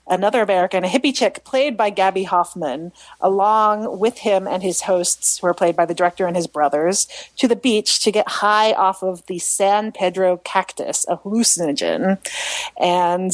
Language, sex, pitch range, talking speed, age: English, female, 180-240 Hz, 175 wpm, 30-49